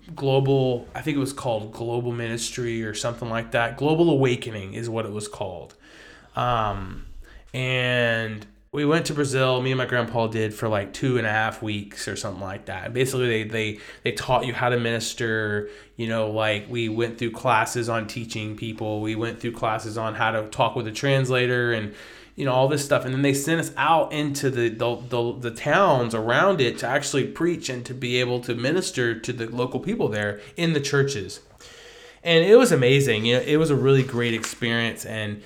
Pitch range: 110-135 Hz